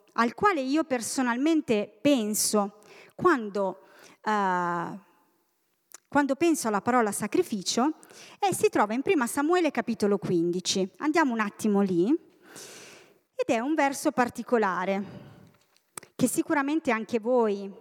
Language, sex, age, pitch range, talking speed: Italian, female, 30-49, 205-285 Hz, 110 wpm